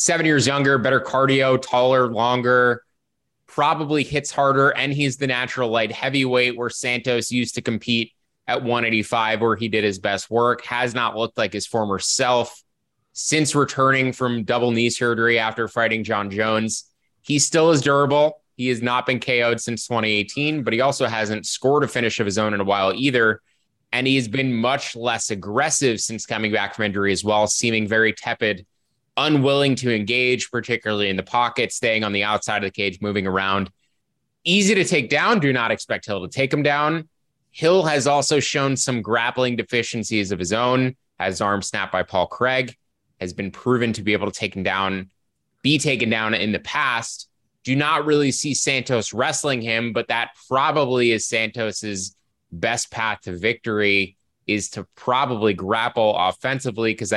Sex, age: male, 20-39